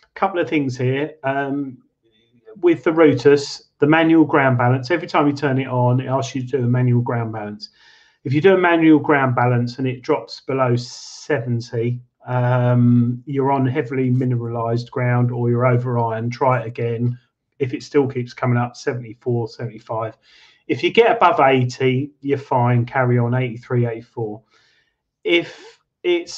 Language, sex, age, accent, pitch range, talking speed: English, male, 30-49, British, 120-145 Hz, 160 wpm